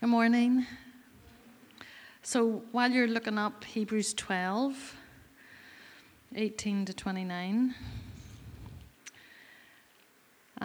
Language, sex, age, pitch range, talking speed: English, female, 30-49, 190-225 Hz, 70 wpm